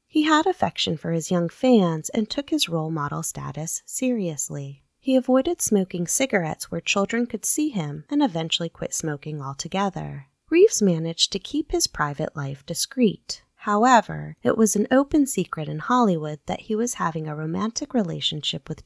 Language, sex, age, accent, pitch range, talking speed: English, female, 20-39, American, 155-240 Hz, 165 wpm